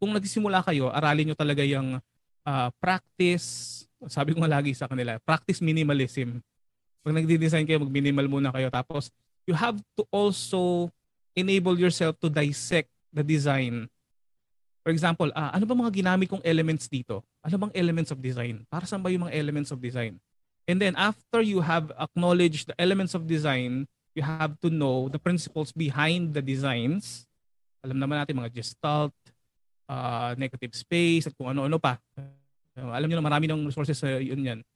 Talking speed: 165 wpm